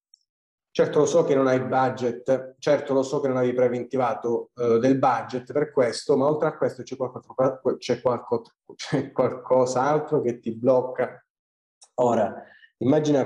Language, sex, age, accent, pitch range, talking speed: Italian, male, 30-49, native, 115-135 Hz, 145 wpm